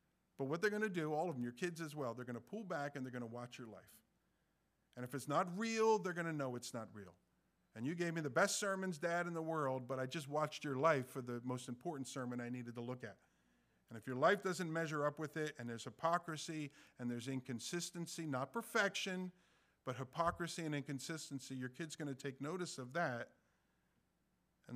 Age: 50-69